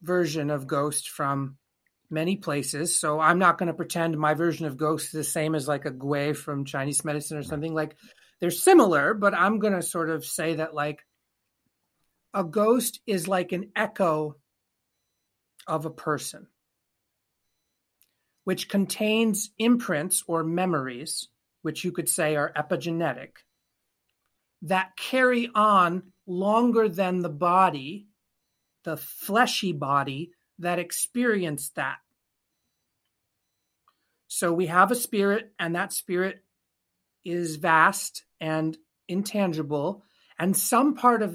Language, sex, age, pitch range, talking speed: English, male, 40-59, 155-205 Hz, 130 wpm